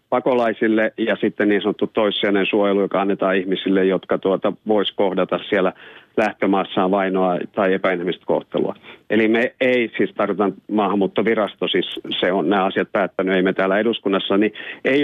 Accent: native